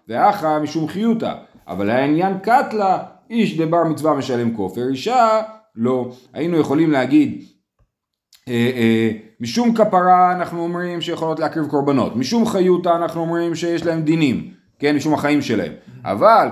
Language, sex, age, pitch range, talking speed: Hebrew, male, 30-49, 130-185 Hz, 135 wpm